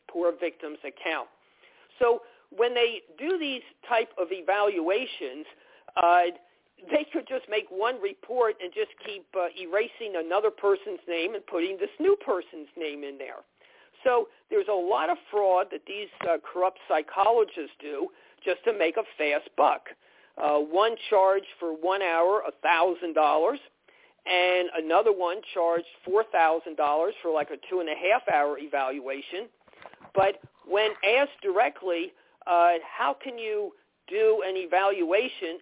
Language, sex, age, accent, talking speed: English, male, 50-69, American, 145 wpm